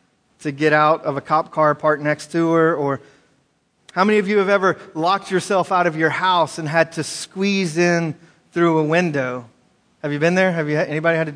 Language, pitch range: English, 150-175 Hz